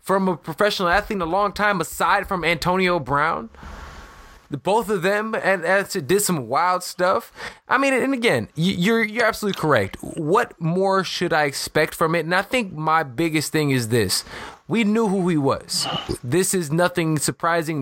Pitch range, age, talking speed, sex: 160-210 Hz, 20-39, 175 wpm, male